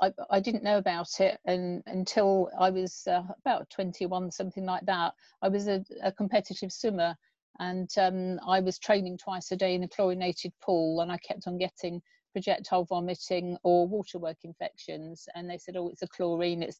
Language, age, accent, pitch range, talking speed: English, 50-69, British, 175-200 Hz, 190 wpm